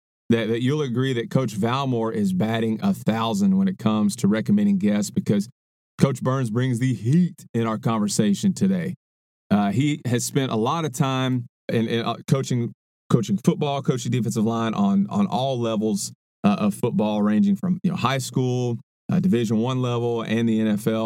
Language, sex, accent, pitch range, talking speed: English, male, American, 115-155 Hz, 180 wpm